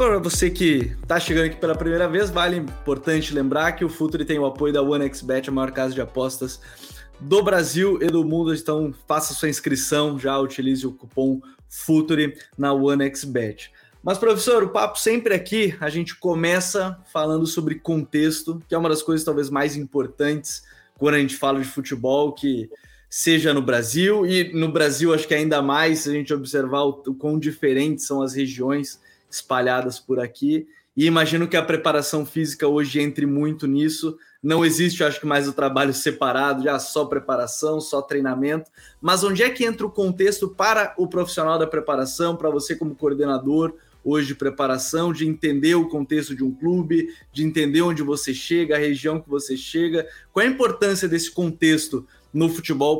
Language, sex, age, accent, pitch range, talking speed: Portuguese, male, 20-39, Brazilian, 140-165 Hz, 180 wpm